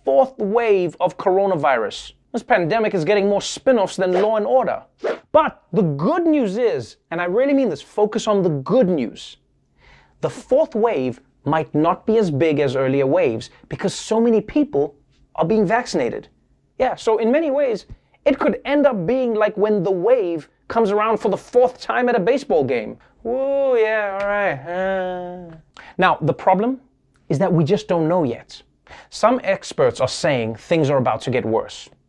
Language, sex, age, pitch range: English, male, 30-49, 160-245 Hz